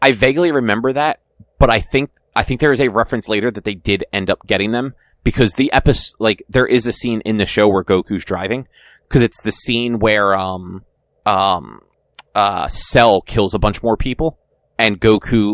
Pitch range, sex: 100-130 Hz, male